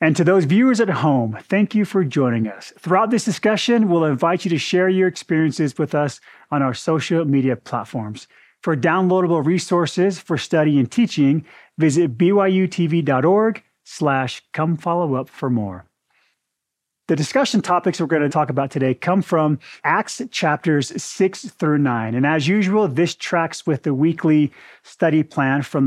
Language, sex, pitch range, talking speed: English, male, 135-180 Hz, 160 wpm